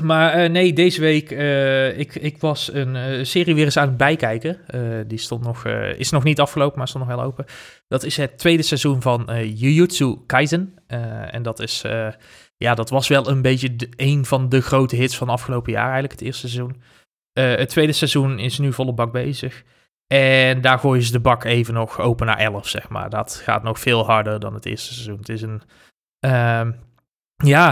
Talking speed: 215 wpm